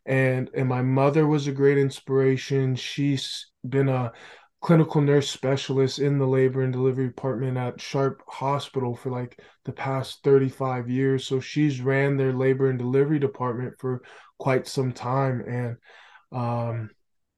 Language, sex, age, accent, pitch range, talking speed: English, male, 20-39, American, 130-145 Hz, 150 wpm